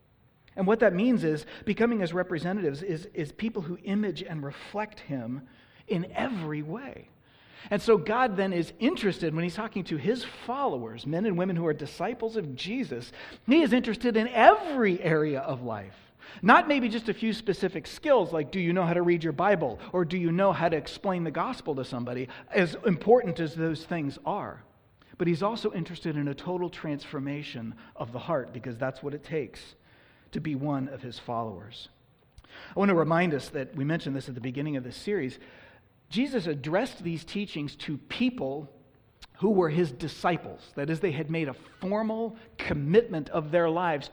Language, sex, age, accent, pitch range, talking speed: English, male, 40-59, American, 140-205 Hz, 190 wpm